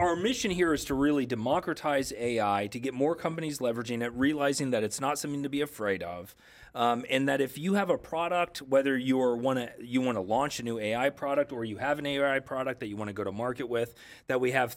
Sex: male